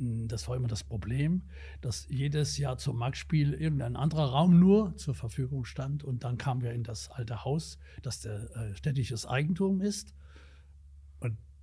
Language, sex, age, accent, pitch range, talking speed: German, male, 60-79, German, 110-150 Hz, 160 wpm